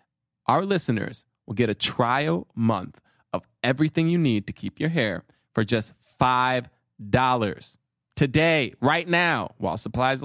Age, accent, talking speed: 20-39, American, 135 wpm